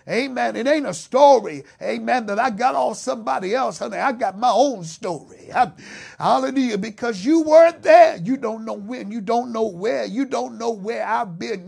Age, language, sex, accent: 50-69, English, male, American